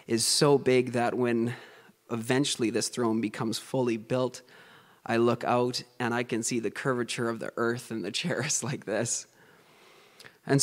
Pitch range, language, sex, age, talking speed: 115-130 Hz, English, male, 20-39, 165 wpm